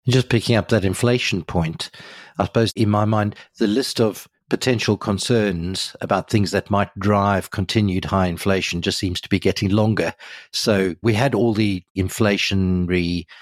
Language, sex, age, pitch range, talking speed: English, male, 50-69, 90-110 Hz, 160 wpm